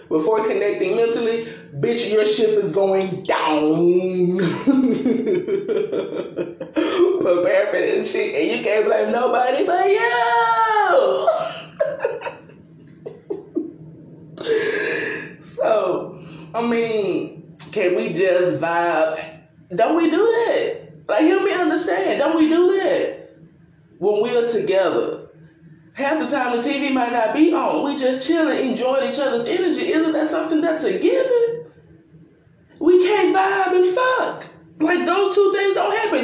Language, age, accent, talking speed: English, 20-39, American, 125 wpm